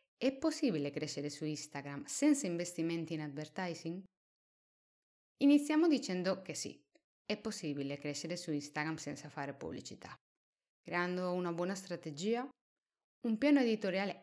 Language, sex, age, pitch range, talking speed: Italian, female, 20-39, 145-205 Hz, 120 wpm